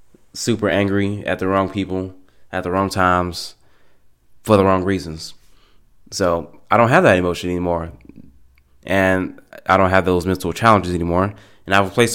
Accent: American